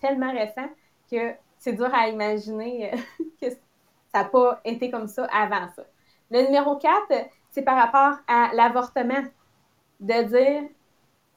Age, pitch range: 20-39, 215-270 Hz